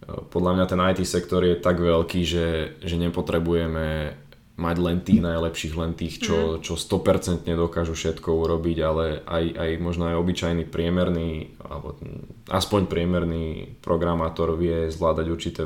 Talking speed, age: 140 wpm, 20-39